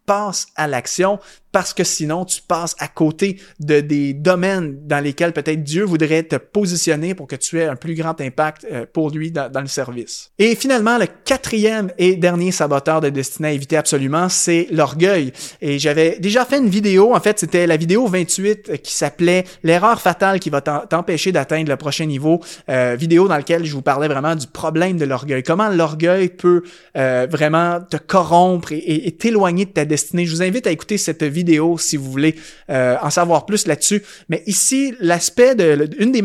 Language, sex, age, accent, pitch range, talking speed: French, male, 20-39, Canadian, 150-185 Hz, 200 wpm